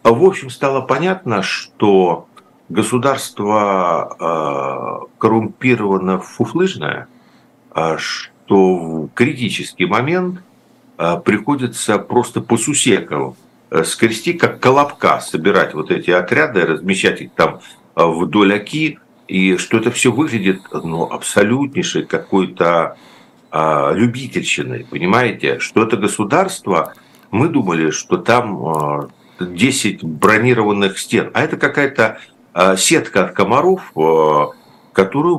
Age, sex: 60-79, male